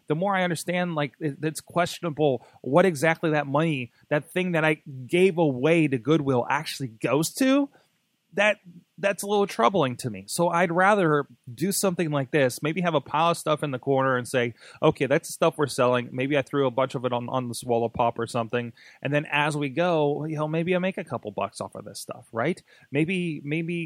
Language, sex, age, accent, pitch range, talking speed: English, male, 30-49, American, 125-165 Hz, 220 wpm